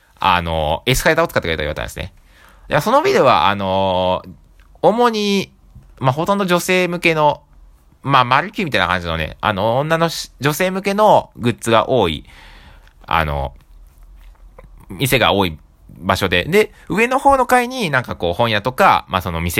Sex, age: male, 20-39